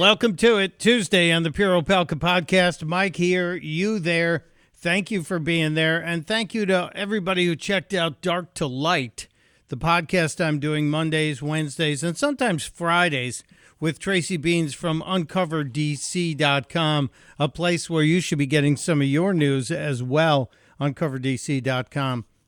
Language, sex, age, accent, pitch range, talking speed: English, male, 50-69, American, 145-185 Hz, 150 wpm